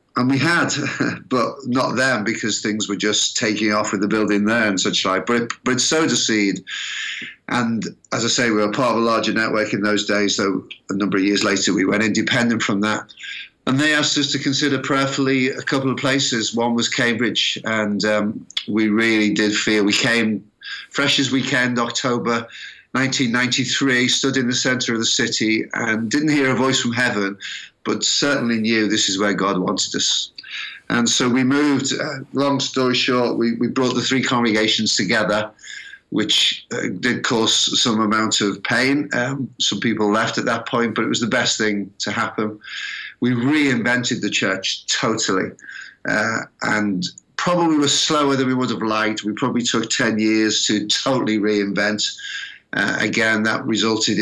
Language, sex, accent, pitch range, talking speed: English, male, British, 105-130 Hz, 180 wpm